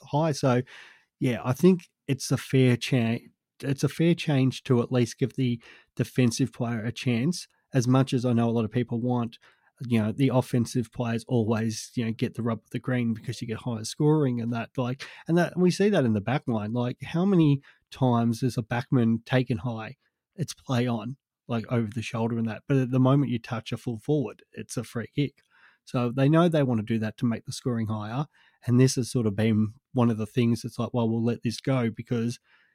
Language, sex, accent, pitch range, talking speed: English, male, Australian, 115-130 Hz, 230 wpm